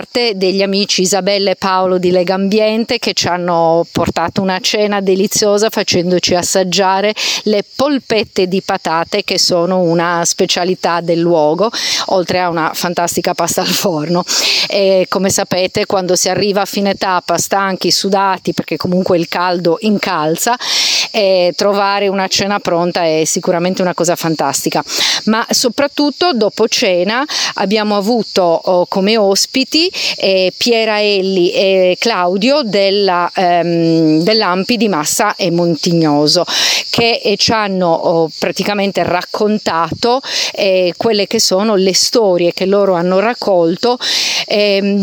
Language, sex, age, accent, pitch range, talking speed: Italian, female, 40-59, native, 175-210 Hz, 125 wpm